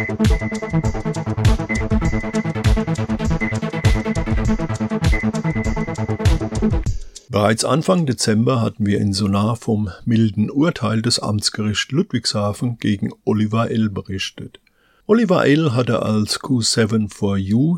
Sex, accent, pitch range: male, German, 110-145 Hz